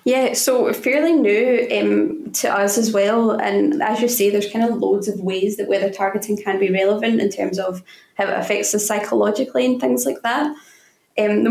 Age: 10-29